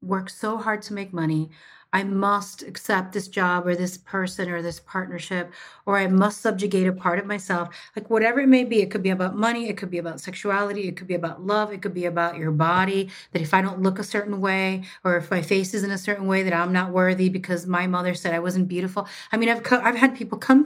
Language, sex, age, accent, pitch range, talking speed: English, female, 30-49, American, 180-225 Hz, 250 wpm